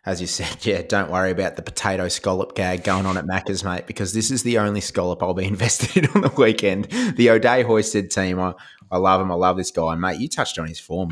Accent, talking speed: Australian, 260 wpm